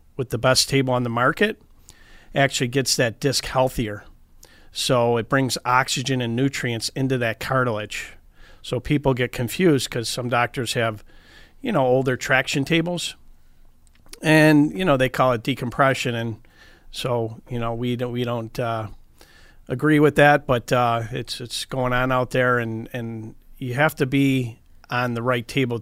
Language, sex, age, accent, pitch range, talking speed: English, male, 40-59, American, 120-140 Hz, 165 wpm